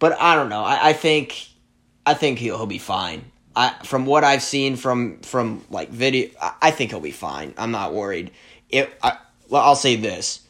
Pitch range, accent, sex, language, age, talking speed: 120-155 Hz, American, male, English, 20-39, 205 wpm